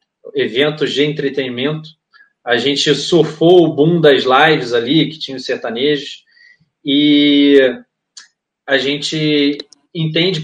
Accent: Brazilian